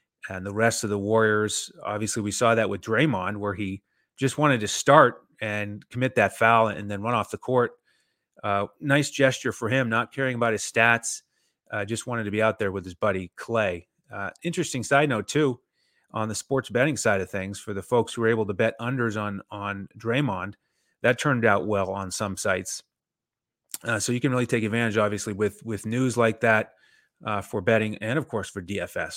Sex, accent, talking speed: male, American, 210 wpm